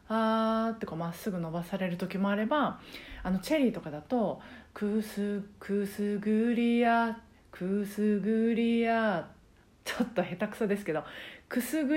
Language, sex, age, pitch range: Japanese, female, 40-59, 180-245 Hz